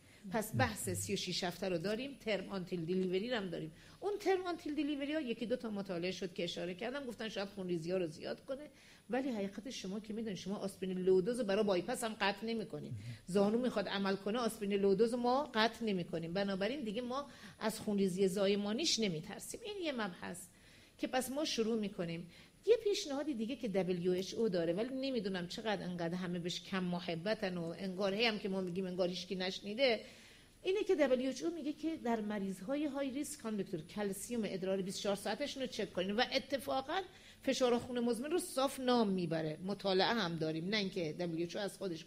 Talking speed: 180 wpm